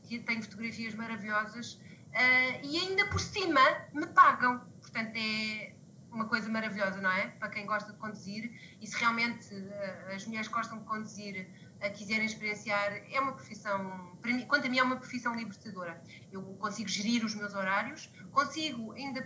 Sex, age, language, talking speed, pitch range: female, 30-49, Portuguese, 160 wpm, 205-260 Hz